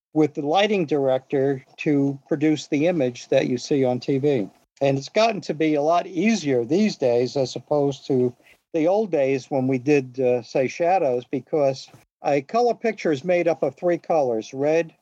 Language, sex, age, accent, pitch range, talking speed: English, male, 50-69, American, 130-170 Hz, 185 wpm